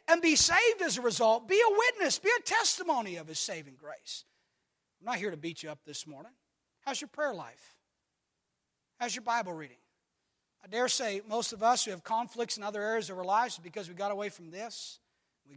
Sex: male